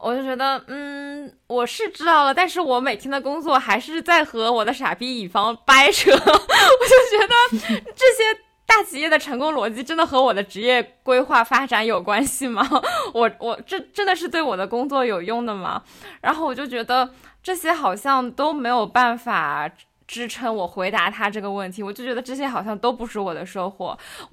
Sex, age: female, 20-39